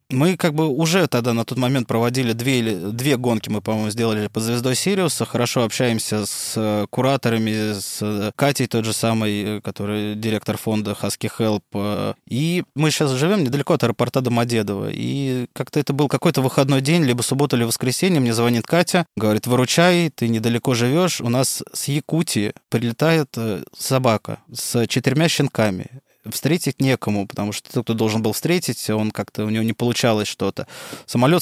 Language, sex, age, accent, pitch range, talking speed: Russian, male, 20-39, native, 110-140 Hz, 160 wpm